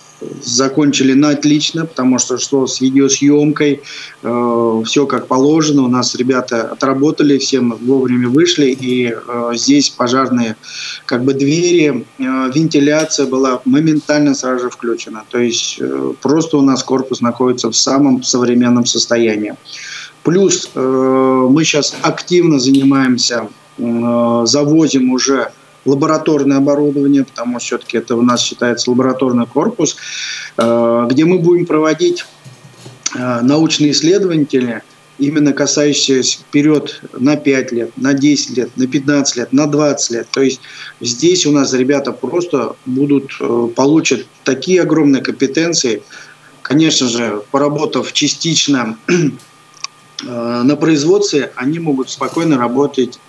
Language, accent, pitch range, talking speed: Russian, native, 125-145 Hz, 125 wpm